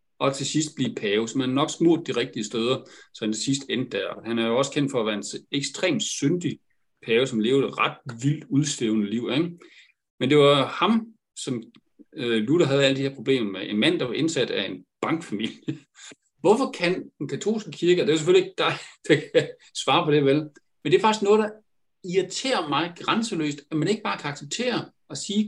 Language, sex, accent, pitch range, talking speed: Danish, male, native, 120-195 Hz, 215 wpm